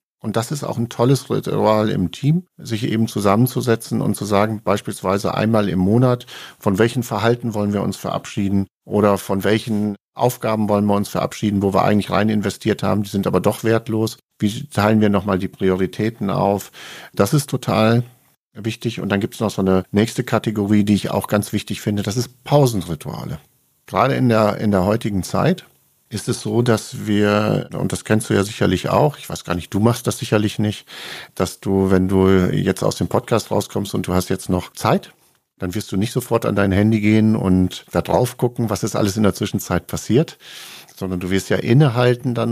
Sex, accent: male, German